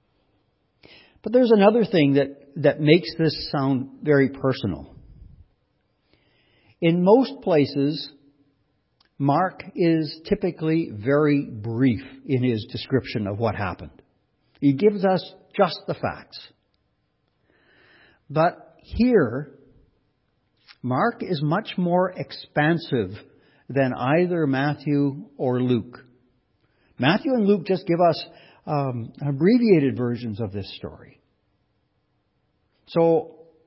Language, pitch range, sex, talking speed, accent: English, 120-160 Hz, male, 100 wpm, American